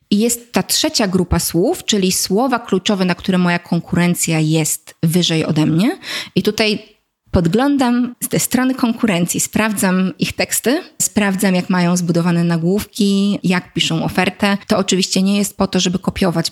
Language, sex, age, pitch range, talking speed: Polish, female, 20-39, 180-225 Hz, 155 wpm